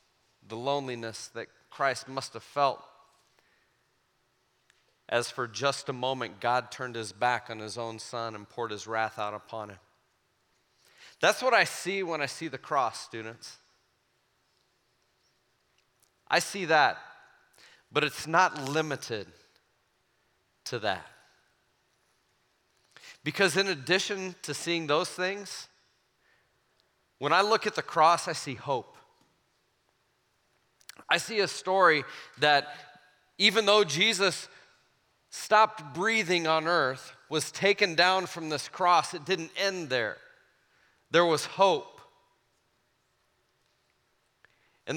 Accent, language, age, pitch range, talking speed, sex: American, English, 40-59, 135-190 Hz, 115 wpm, male